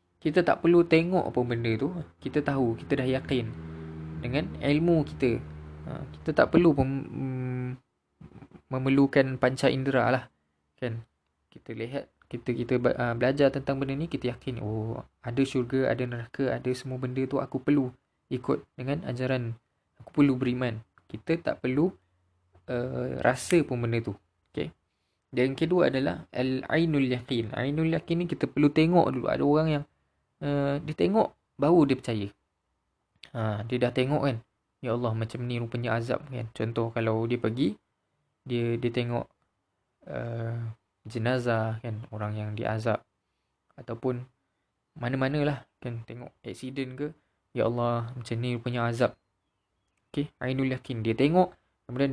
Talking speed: 145 wpm